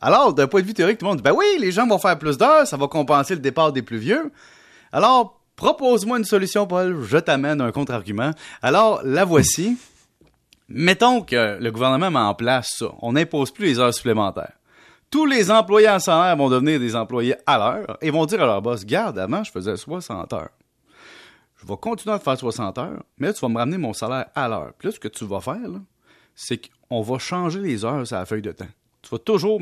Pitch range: 115-185 Hz